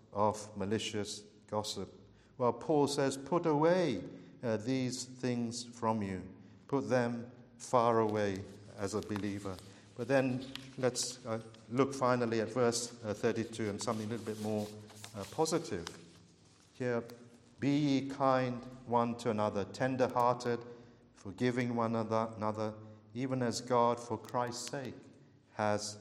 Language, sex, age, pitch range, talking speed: English, male, 50-69, 105-125 Hz, 130 wpm